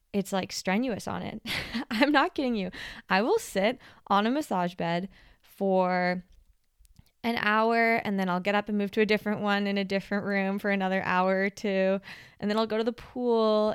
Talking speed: 200 wpm